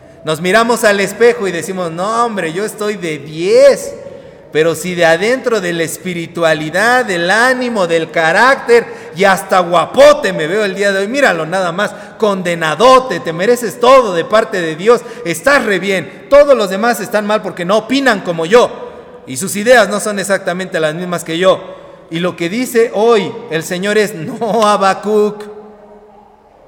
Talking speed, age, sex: 170 wpm, 40-59, male